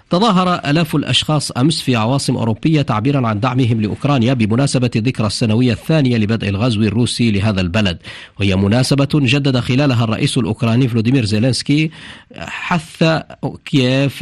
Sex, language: male, Arabic